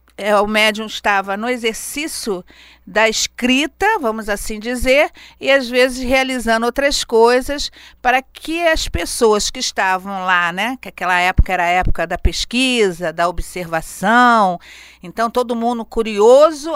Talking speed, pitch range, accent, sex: 140 wpm, 195-255 Hz, Brazilian, female